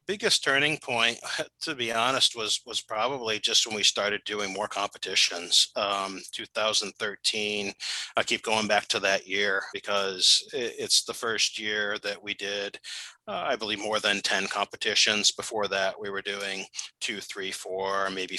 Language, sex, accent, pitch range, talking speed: English, male, American, 100-120 Hz, 155 wpm